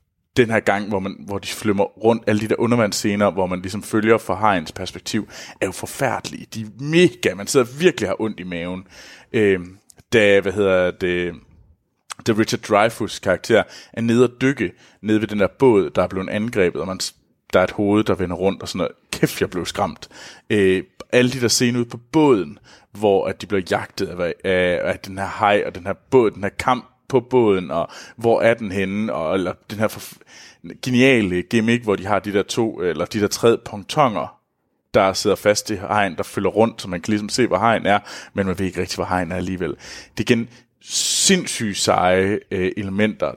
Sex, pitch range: male, 95-115 Hz